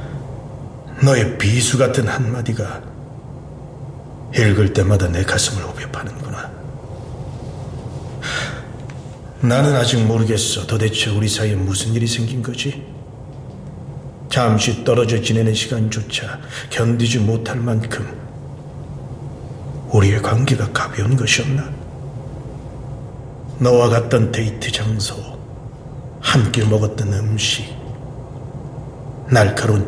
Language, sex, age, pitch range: Korean, male, 40-59, 115-135 Hz